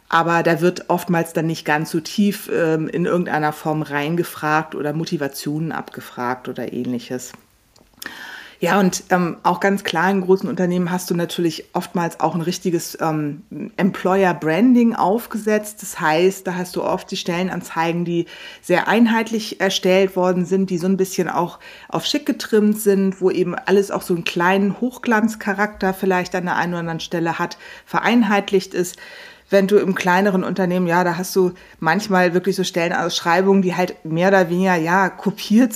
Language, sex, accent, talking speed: German, female, German, 165 wpm